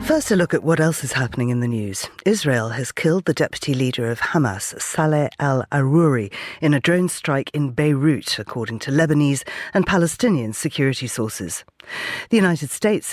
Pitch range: 130-180 Hz